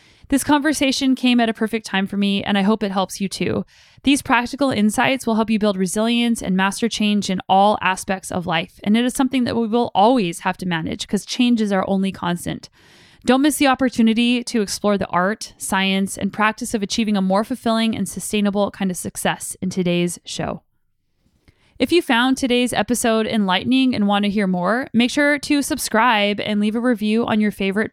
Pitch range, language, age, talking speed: 200-250 Hz, English, 20-39, 205 wpm